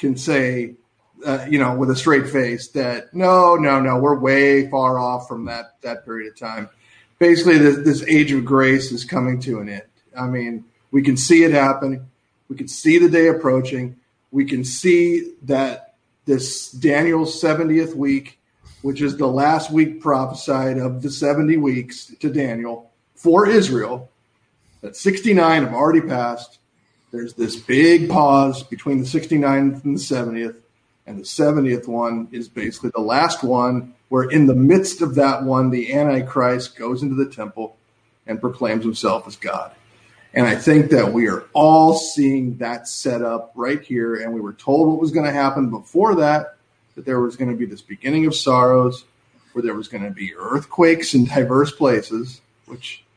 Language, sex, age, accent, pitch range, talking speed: English, male, 40-59, American, 120-145 Hz, 175 wpm